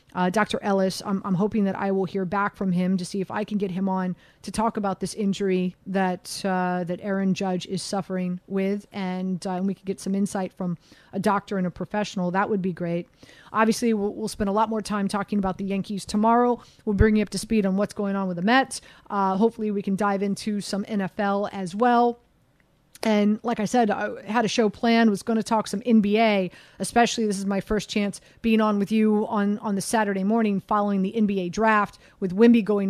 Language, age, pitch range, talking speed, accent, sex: English, 30-49, 195-225 Hz, 230 wpm, American, female